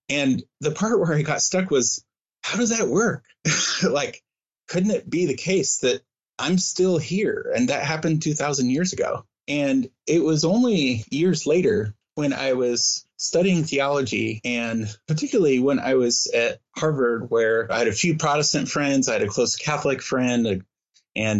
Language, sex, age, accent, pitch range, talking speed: English, male, 30-49, American, 115-155 Hz, 170 wpm